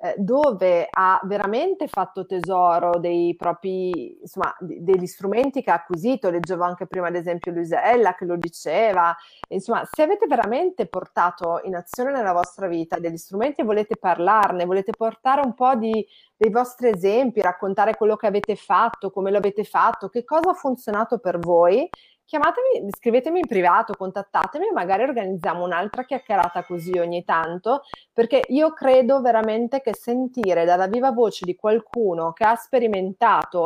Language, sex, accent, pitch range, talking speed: Italian, female, native, 180-250 Hz, 155 wpm